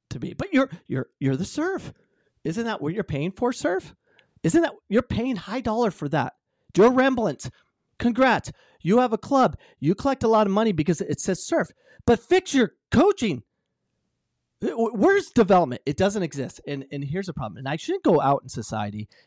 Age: 40-59